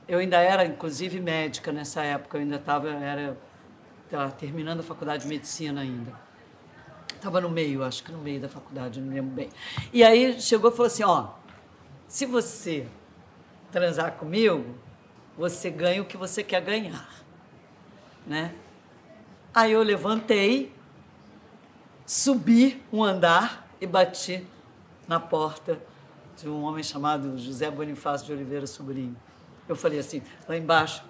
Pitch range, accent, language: 150-195 Hz, Brazilian, Portuguese